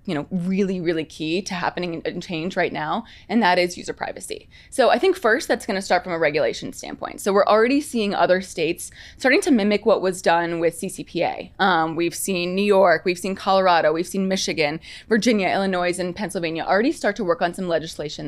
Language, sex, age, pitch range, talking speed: English, female, 20-39, 170-225 Hz, 210 wpm